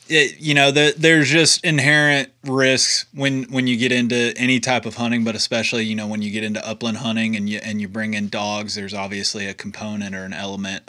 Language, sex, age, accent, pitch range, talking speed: English, male, 20-39, American, 105-130 Hz, 225 wpm